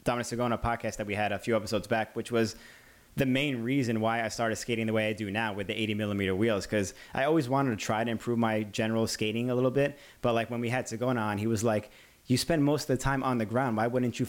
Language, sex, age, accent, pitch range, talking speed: English, male, 20-39, American, 105-120 Hz, 275 wpm